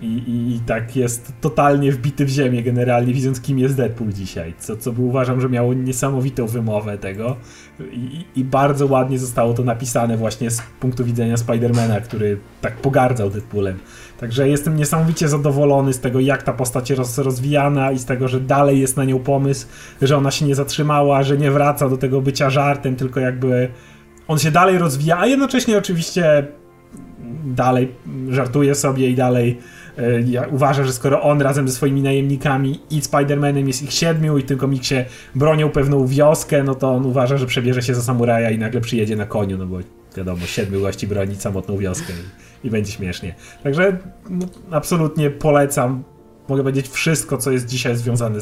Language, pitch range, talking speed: Polish, 115-145 Hz, 175 wpm